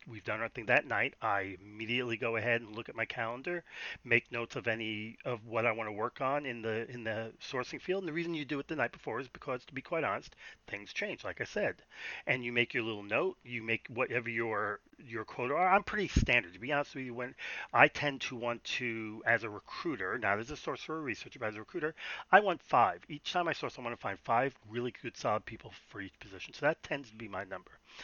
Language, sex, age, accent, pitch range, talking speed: English, male, 40-59, American, 110-140 Hz, 255 wpm